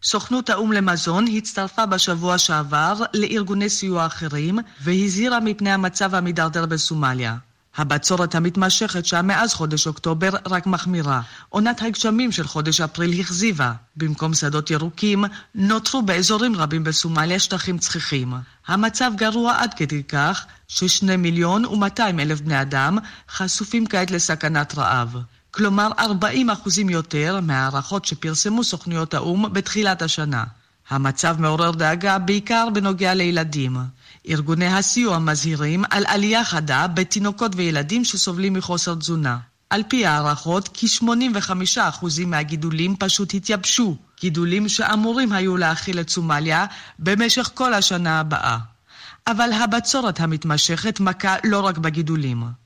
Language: Hebrew